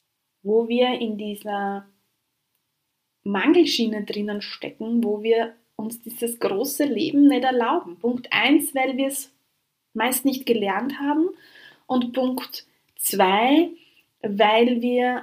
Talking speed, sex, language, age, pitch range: 115 wpm, female, German, 20-39, 185-240 Hz